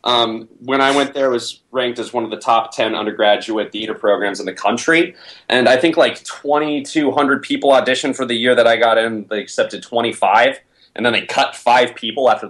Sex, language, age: male, English, 30-49